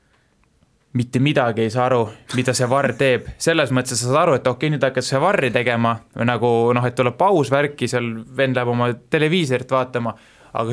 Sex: male